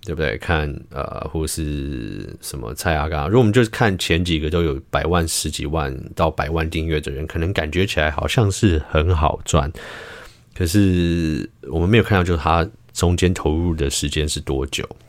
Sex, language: male, Chinese